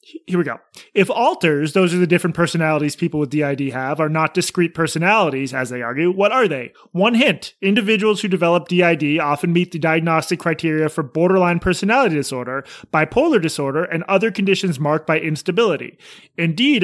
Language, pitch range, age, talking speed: English, 160-195 Hz, 30-49, 170 wpm